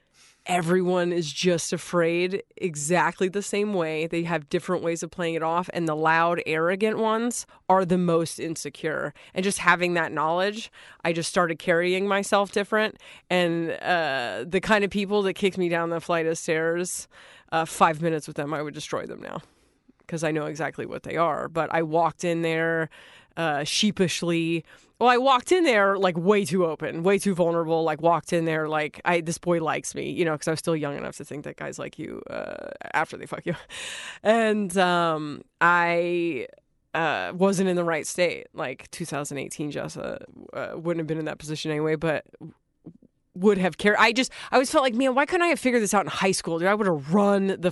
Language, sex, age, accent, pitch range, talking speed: English, female, 20-39, American, 165-195 Hz, 205 wpm